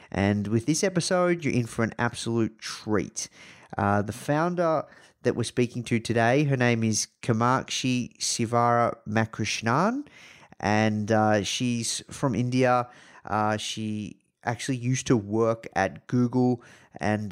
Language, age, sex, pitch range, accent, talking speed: English, 30-49, male, 105-120 Hz, Australian, 130 wpm